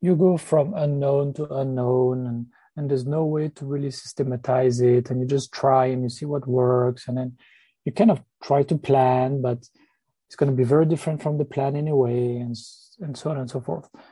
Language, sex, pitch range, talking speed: English, male, 130-155 Hz, 215 wpm